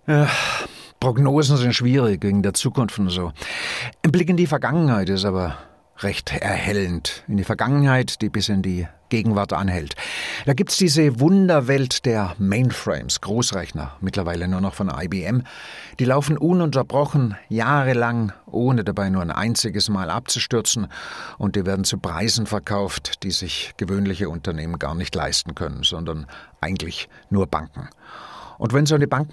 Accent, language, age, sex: German, German, 60-79, male